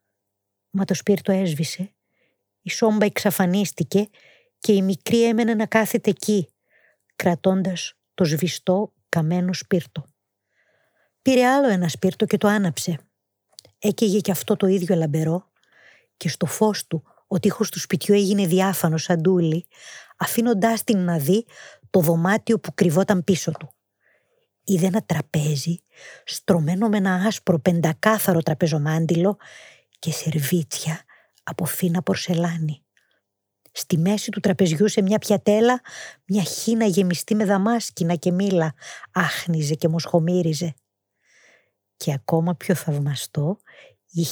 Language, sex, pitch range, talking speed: Greek, female, 165-215 Hz, 120 wpm